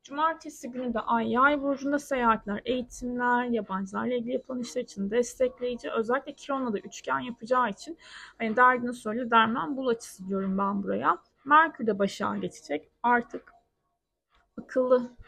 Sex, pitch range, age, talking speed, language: female, 225-270 Hz, 30-49, 135 wpm, Turkish